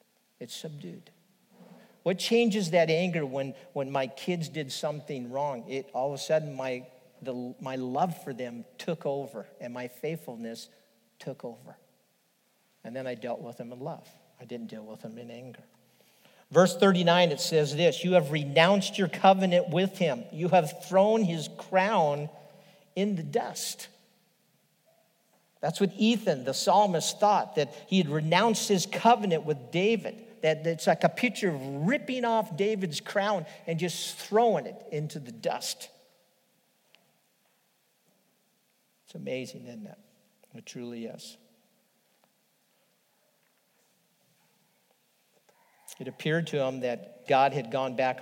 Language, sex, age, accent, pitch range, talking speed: English, male, 50-69, American, 130-185 Hz, 140 wpm